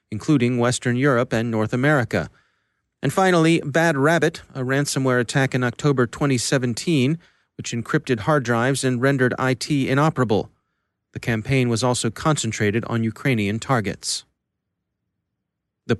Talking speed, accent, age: 125 wpm, American, 30-49